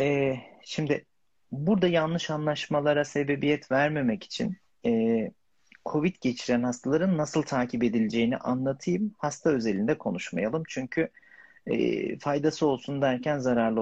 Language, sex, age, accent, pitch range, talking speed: Turkish, male, 50-69, native, 125-160 Hz, 95 wpm